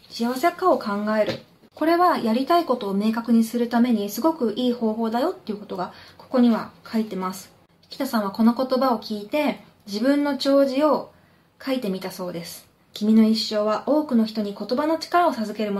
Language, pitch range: Japanese, 210-270 Hz